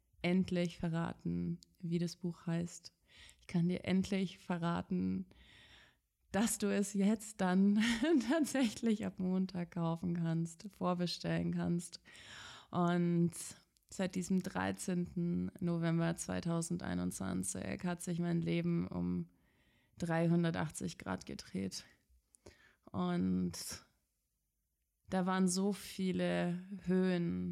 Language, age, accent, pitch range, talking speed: German, 20-39, German, 110-190 Hz, 95 wpm